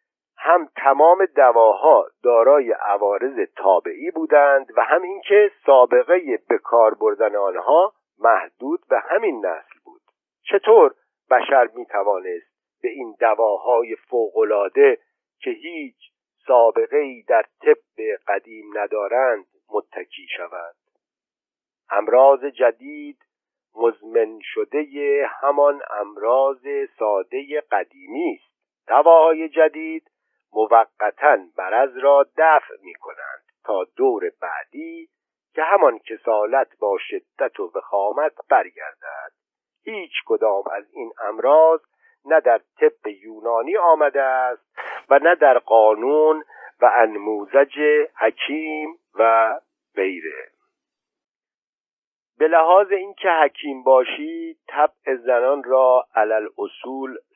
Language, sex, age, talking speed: Persian, male, 50-69, 100 wpm